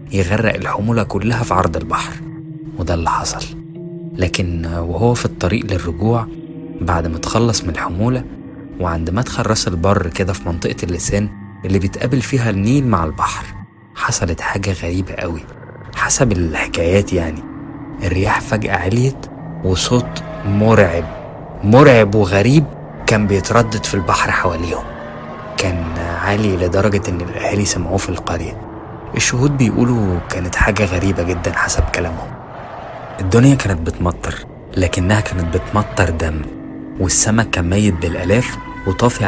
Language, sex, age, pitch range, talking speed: Arabic, male, 20-39, 90-120 Hz, 120 wpm